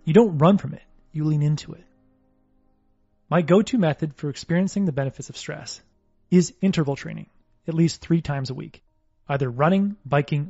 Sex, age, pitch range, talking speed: male, 30-49, 130-180 Hz, 170 wpm